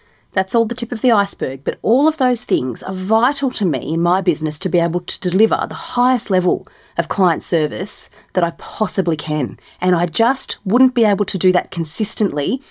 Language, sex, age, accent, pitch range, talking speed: English, female, 30-49, Australian, 165-220 Hz, 210 wpm